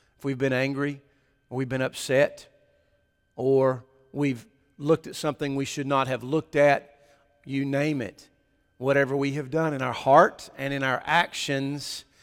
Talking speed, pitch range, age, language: 160 wpm, 125-150 Hz, 40-59, English